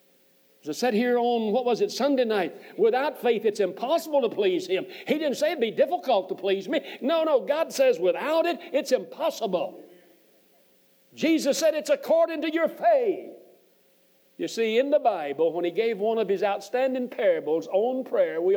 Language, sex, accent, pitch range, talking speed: English, male, American, 190-300 Hz, 180 wpm